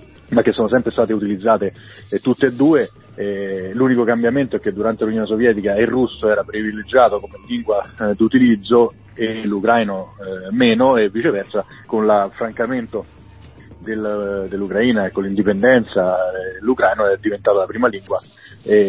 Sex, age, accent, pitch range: male, 40-59, native, 100-115 Hz